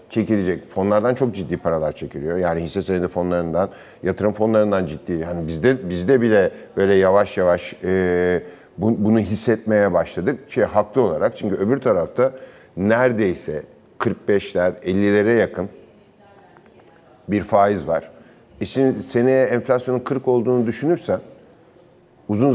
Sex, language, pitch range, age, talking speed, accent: male, Turkish, 95-130 Hz, 50-69, 120 wpm, native